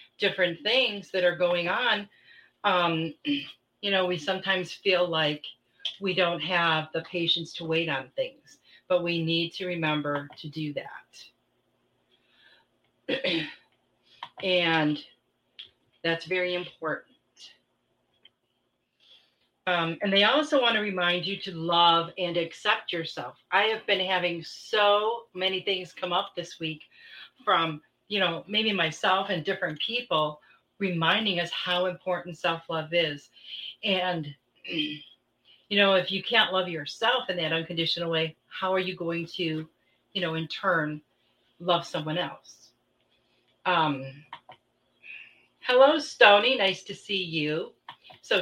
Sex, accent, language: female, American, English